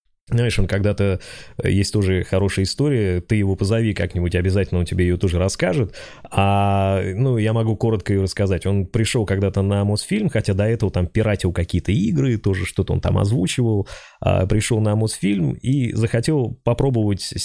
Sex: male